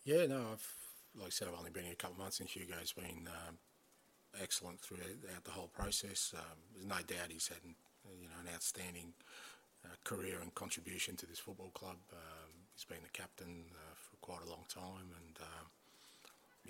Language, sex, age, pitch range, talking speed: English, male, 30-49, 85-90 Hz, 195 wpm